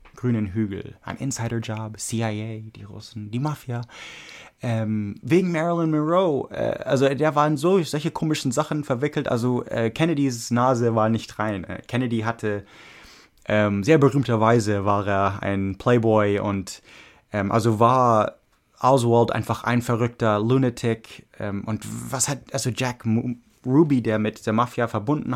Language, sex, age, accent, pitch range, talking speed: English, male, 20-39, German, 110-130 Hz, 140 wpm